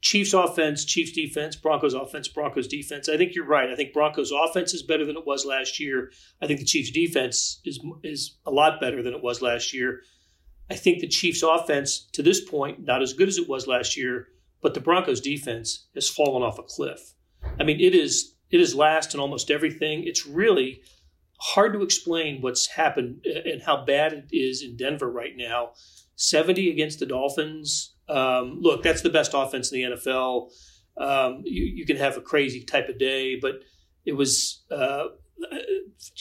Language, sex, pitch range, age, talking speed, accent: English, male, 130-175 Hz, 40-59, 195 wpm, American